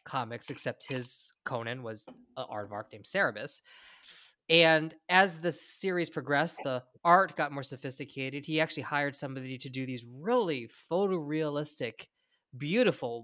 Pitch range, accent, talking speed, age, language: 125-165 Hz, American, 130 wpm, 20-39, English